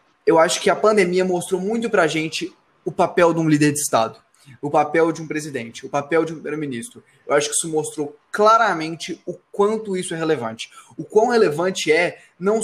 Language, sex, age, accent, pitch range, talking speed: Portuguese, male, 20-39, Brazilian, 155-205 Hz, 200 wpm